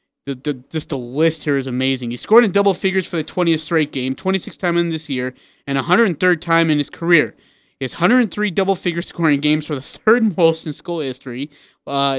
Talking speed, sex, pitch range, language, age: 215 wpm, male, 145-185 Hz, English, 20-39